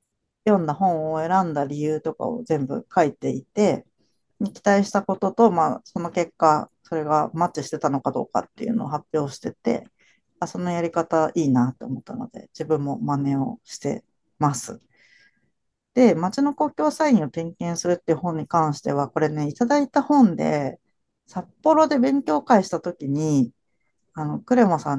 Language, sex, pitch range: Japanese, female, 150-225 Hz